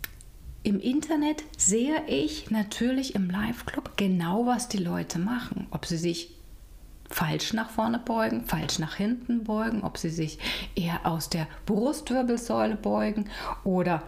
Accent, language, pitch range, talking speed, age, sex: German, German, 170-245 Hz, 135 wpm, 30-49, female